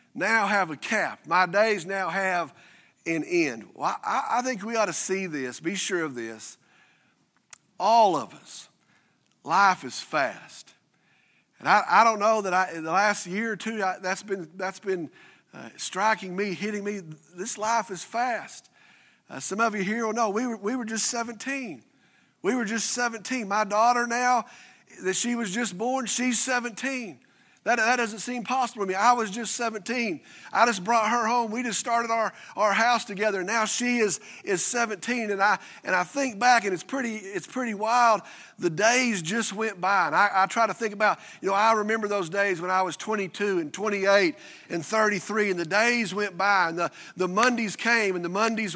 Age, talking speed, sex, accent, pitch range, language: 50-69, 200 wpm, male, American, 195-240 Hz, English